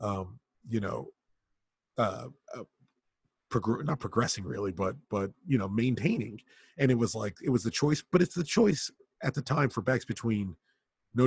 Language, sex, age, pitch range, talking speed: English, male, 30-49, 100-120 Hz, 170 wpm